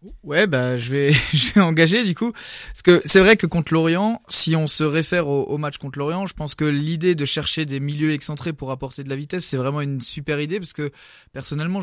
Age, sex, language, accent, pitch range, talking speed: 20-39, male, French, French, 135-160 Hz, 245 wpm